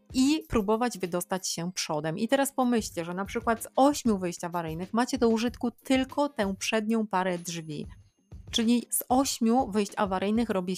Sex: female